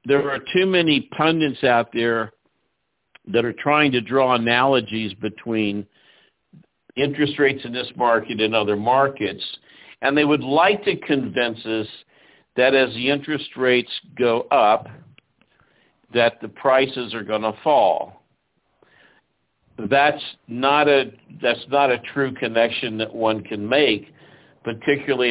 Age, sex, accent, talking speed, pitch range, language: 60-79, male, American, 130 wpm, 110-140 Hz, English